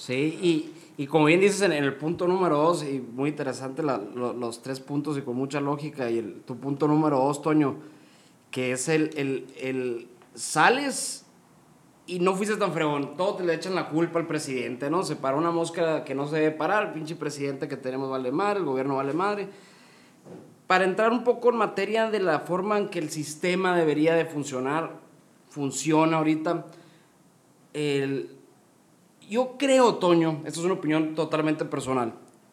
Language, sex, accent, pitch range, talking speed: Spanish, male, Mexican, 140-180 Hz, 180 wpm